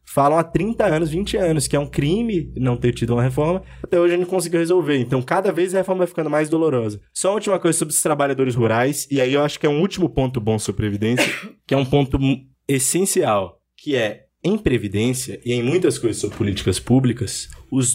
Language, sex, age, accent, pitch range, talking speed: Portuguese, male, 20-39, Brazilian, 120-150 Hz, 225 wpm